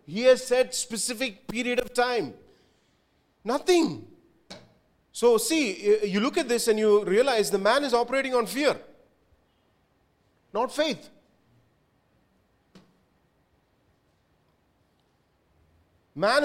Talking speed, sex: 95 wpm, male